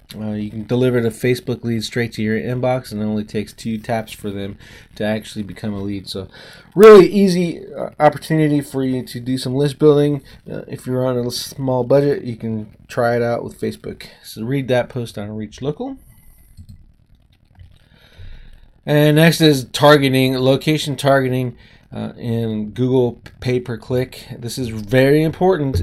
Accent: American